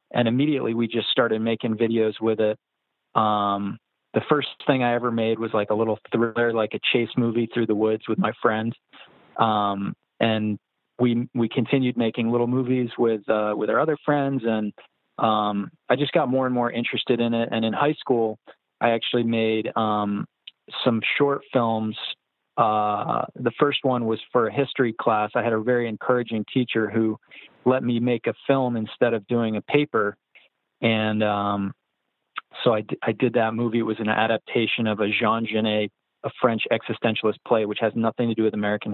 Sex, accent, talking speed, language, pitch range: male, American, 185 wpm, English, 110-125 Hz